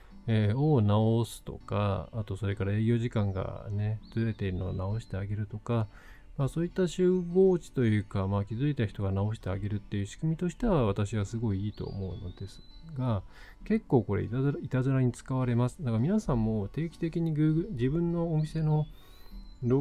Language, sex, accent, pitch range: Japanese, male, native, 100-135 Hz